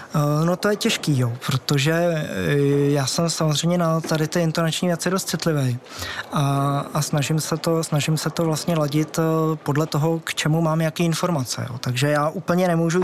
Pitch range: 145-170 Hz